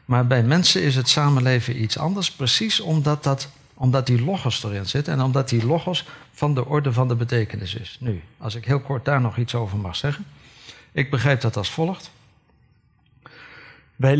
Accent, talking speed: Dutch, 180 wpm